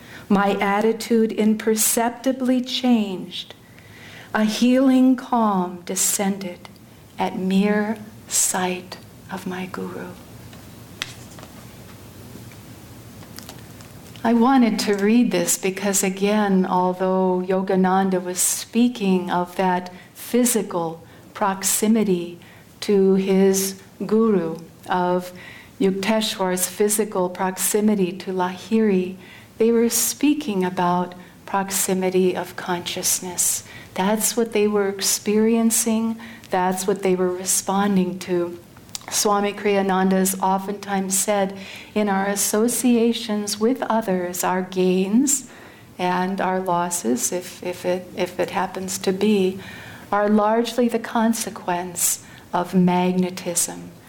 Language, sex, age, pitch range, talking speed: English, female, 60-79, 180-215 Hz, 95 wpm